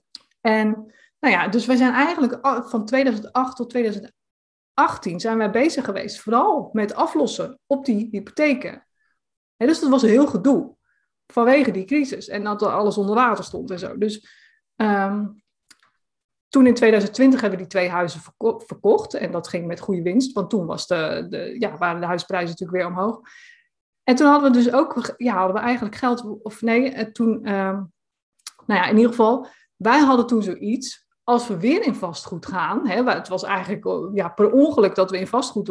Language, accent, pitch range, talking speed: Dutch, Dutch, 190-250 Hz, 180 wpm